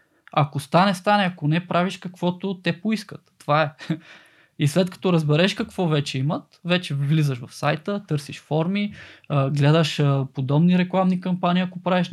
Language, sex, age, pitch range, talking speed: Bulgarian, male, 20-39, 145-180 Hz, 150 wpm